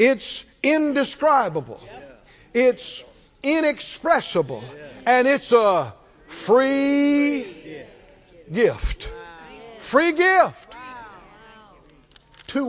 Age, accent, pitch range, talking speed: 50-69, American, 165-250 Hz, 55 wpm